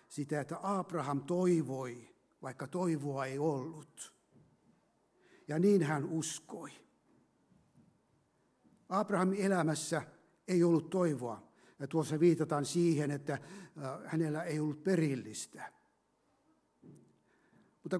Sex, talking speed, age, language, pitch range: male, 90 wpm, 60-79, Finnish, 140-180 Hz